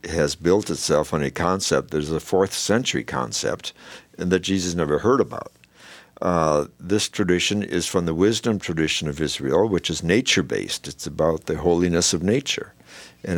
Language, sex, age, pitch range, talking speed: English, male, 60-79, 75-95 Hz, 170 wpm